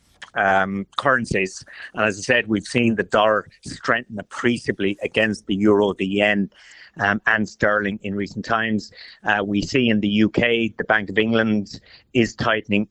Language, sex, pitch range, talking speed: English, male, 100-110 Hz, 165 wpm